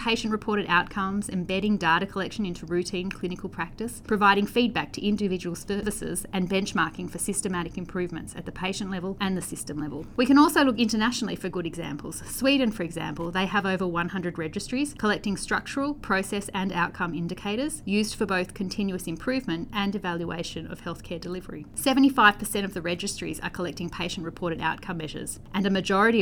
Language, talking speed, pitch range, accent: English, 160 wpm, 175-210 Hz, Australian